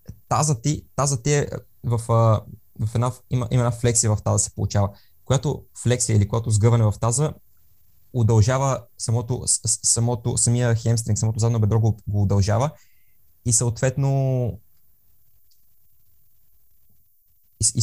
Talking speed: 125 wpm